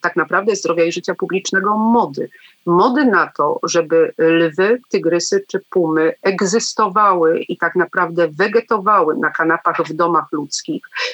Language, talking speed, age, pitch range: Polish, 135 wpm, 40-59, 165-210 Hz